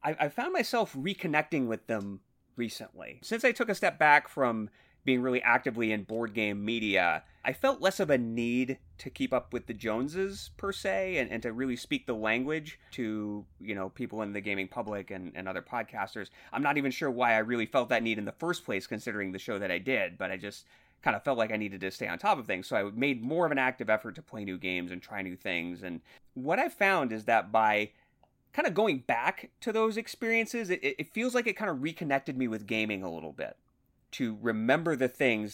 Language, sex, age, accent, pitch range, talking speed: English, male, 30-49, American, 100-135 Hz, 230 wpm